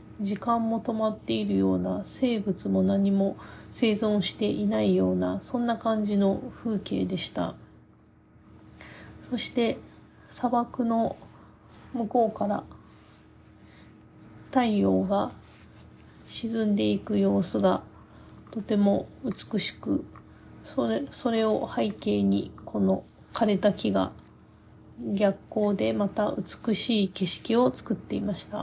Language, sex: Japanese, female